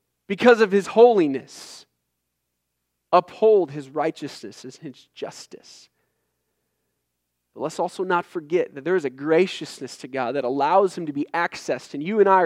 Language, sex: English, male